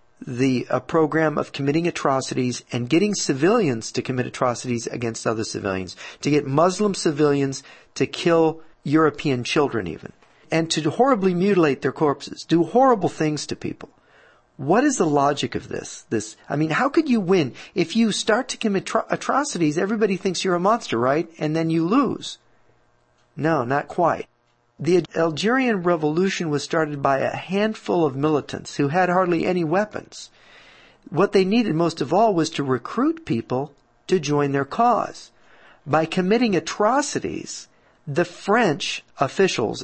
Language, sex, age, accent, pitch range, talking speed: English, male, 50-69, American, 140-195 Hz, 150 wpm